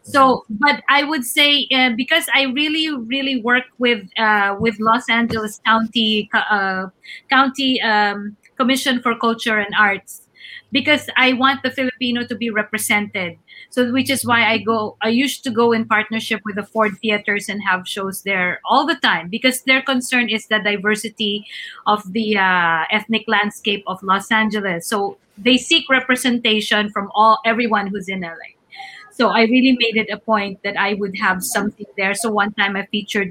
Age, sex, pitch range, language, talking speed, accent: 20-39, female, 210-255 Hz, English, 175 wpm, Filipino